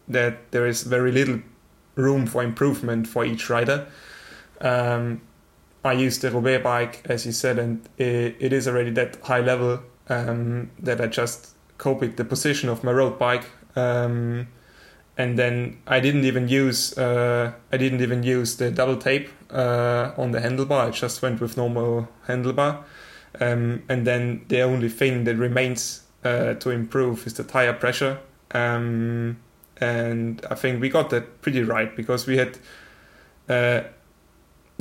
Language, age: English, 20-39